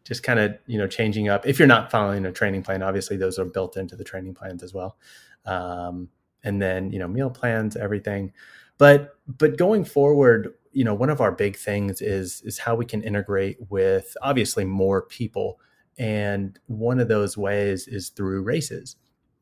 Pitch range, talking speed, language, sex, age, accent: 95-115 Hz, 190 wpm, English, male, 30-49, American